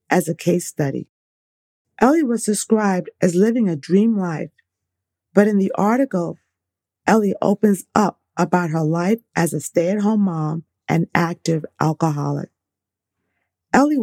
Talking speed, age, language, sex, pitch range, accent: 135 wpm, 40-59, English, female, 165-215 Hz, American